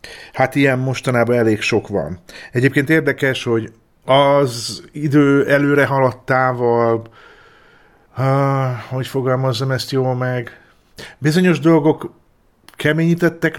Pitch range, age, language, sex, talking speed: 110-140 Hz, 50-69, Hungarian, male, 95 wpm